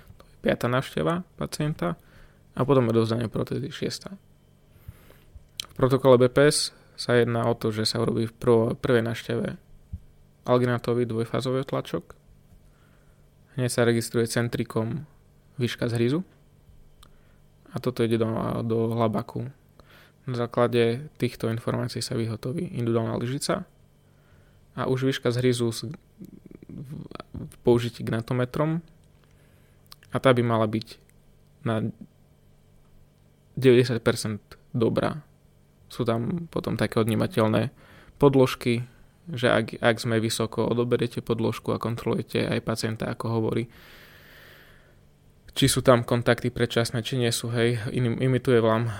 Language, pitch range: Slovak, 115-130 Hz